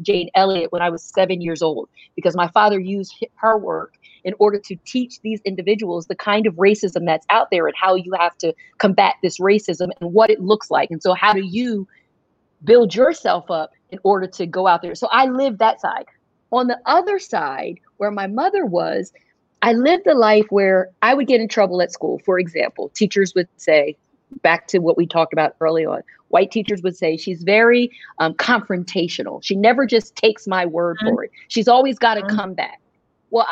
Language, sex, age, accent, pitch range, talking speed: English, female, 40-59, American, 185-240 Hz, 205 wpm